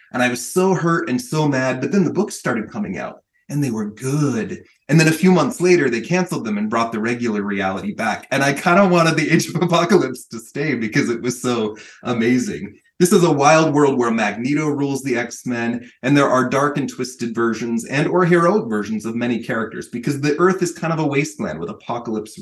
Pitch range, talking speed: 115-155 Hz, 225 wpm